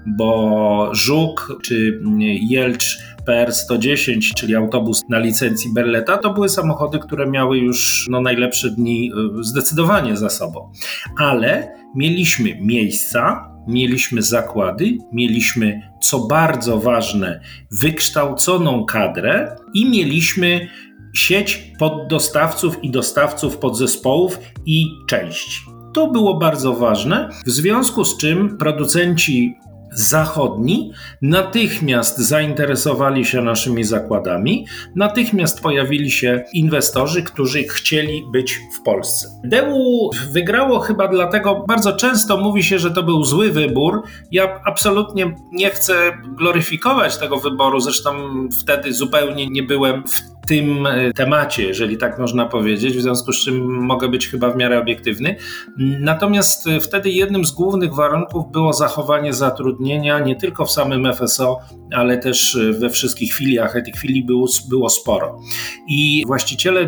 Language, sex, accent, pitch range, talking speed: Polish, male, native, 120-165 Hz, 120 wpm